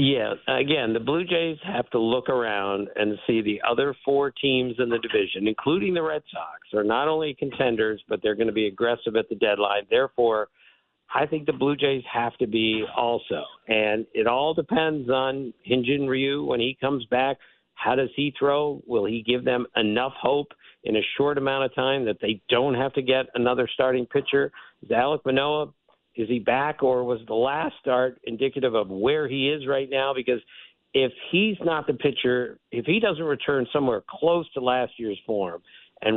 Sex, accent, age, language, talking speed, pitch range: male, American, 50-69, English, 190 wpm, 120-150 Hz